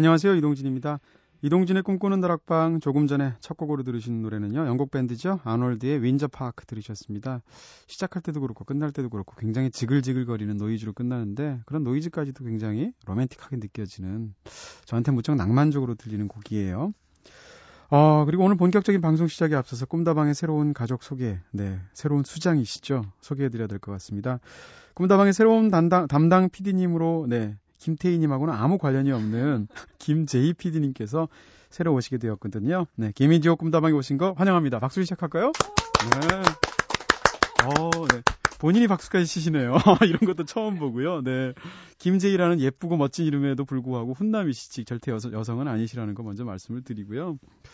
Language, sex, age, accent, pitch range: Korean, male, 30-49, native, 120-170 Hz